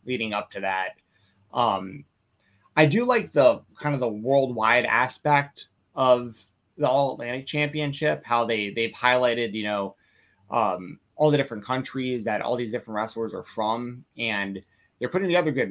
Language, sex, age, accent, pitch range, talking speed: English, male, 20-39, American, 105-145 Hz, 160 wpm